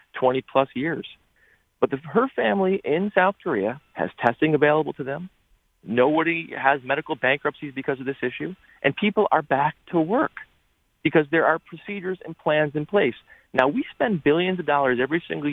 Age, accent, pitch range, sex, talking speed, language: 40-59, American, 135-185 Hz, male, 165 wpm, English